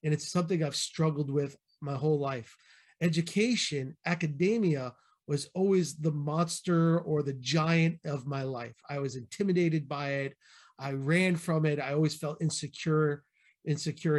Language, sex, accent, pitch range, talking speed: English, male, American, 145-175 Hz, 150 wpm